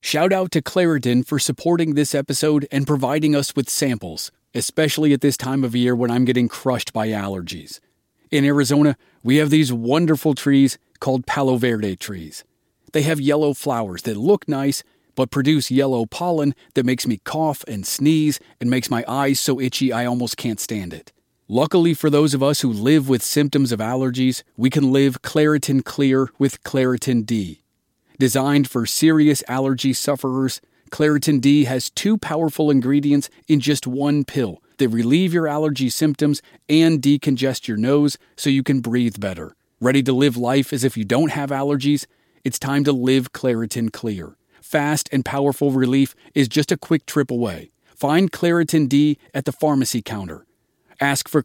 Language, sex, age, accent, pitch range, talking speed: English, male, 30-49, American, 125-150 Hz, 170 wpm